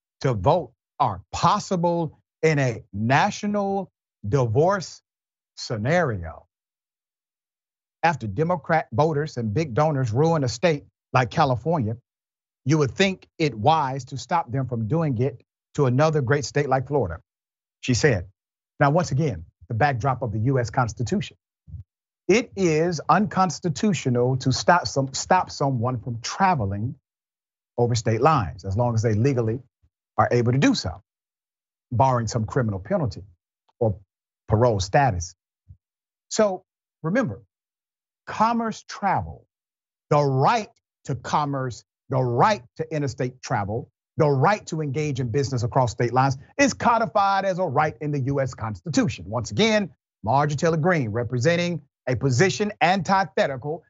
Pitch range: 120-165 Hz